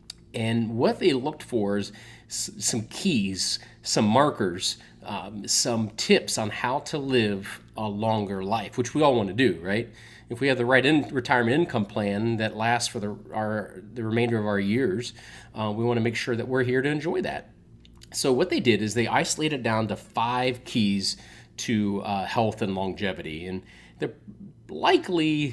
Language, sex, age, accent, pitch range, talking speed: English, male, 30-49, American, 105-125 Hz, 175 wpm